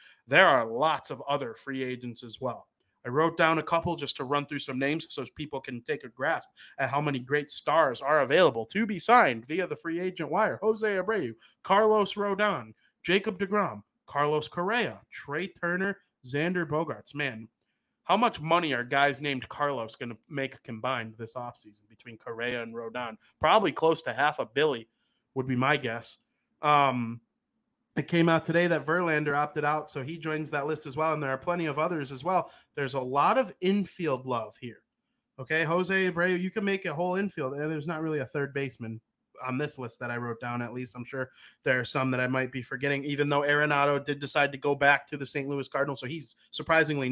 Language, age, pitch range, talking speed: English, 30-49, 130-175 Hz, 210 wpm